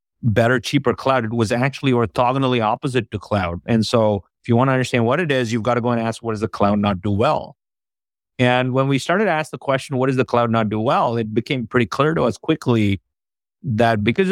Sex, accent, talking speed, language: male, American, 240 wpm, English